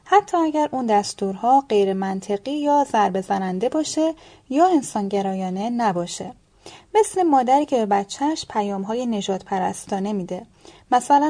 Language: Persian